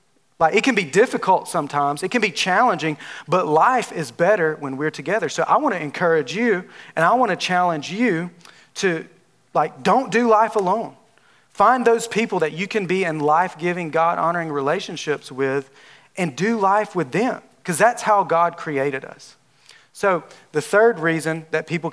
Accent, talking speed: American, 165 wpm